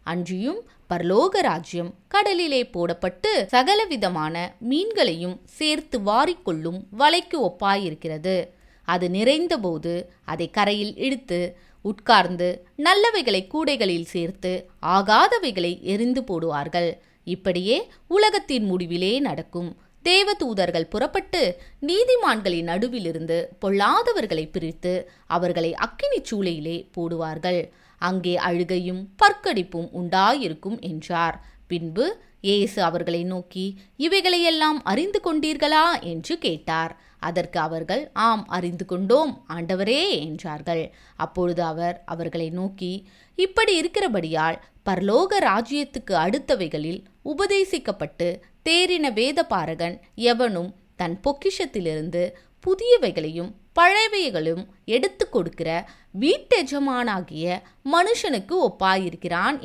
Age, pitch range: 20-39, 175-285 Hz